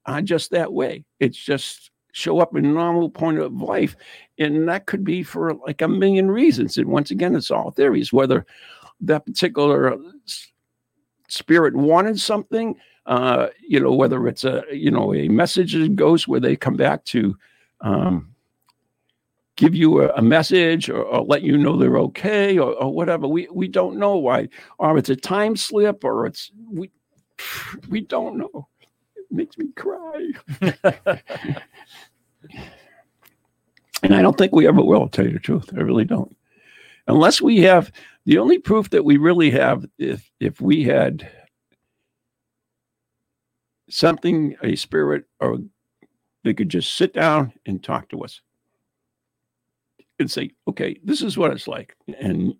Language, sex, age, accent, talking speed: English, male, 60-79, American, 160 wpm